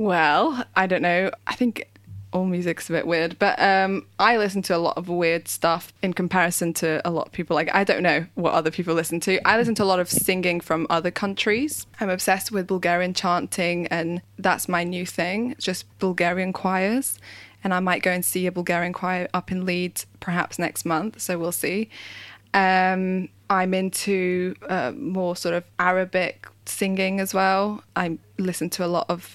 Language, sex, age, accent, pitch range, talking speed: English, female, 20-39, British, 170-195 Hz, 195 wpm